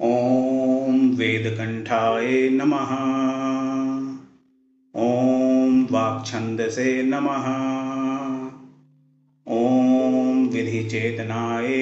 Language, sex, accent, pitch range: Hindi, male, native, 115-135 Hz